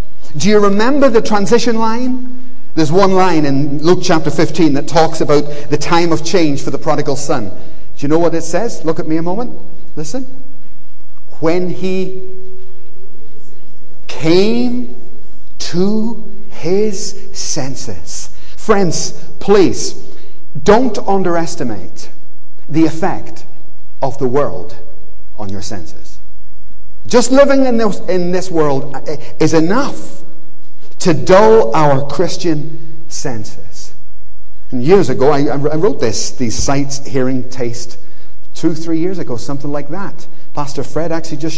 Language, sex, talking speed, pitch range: English, male, 125 wpm, 140-205 Hz